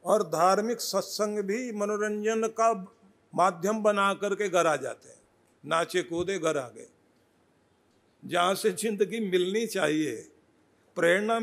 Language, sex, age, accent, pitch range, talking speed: Hindi, male, 50-69, native, 175-210 Hz, 125 wpm